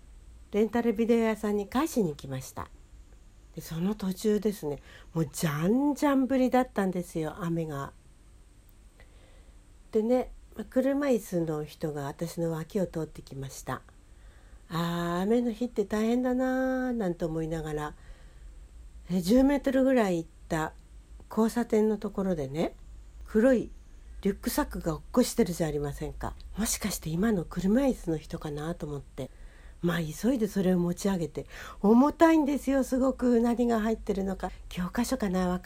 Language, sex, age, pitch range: Japanese, female, 60-79, 165-250 Hz